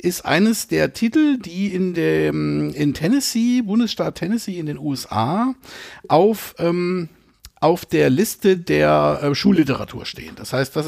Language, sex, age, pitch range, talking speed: German, male, 50-69, 140-195 Hz, 145 wpm